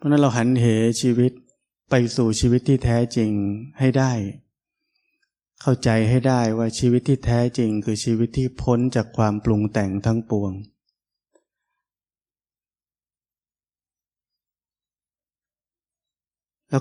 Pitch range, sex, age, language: 110-130 Hz, male, 20-39, Thai